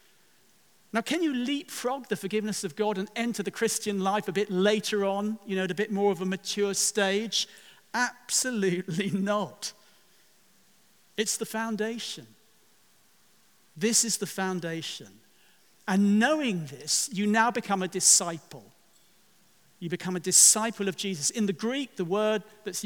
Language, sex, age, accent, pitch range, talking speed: English, male, 50-69, British, 185-220 Hz, 145 wpm